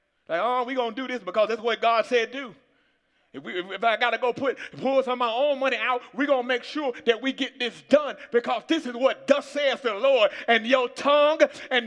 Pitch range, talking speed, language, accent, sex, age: 240-300 Hz, 260 wpm, English, American, male, 30-49